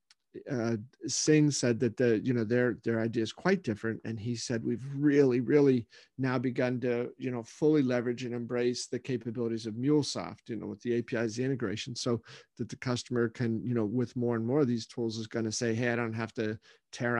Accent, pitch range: American, 120-140 Hz